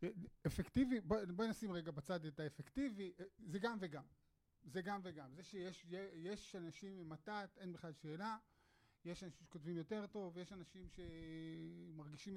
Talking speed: 150 wpm